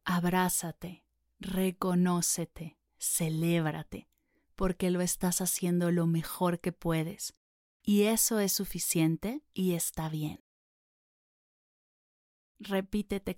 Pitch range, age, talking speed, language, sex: 170-200 Hz, 30-49, 85 wpm, Spanish, female